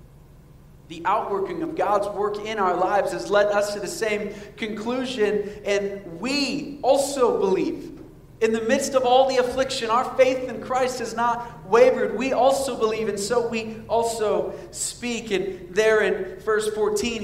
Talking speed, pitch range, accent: 160 wpm, 165-230 Hz, American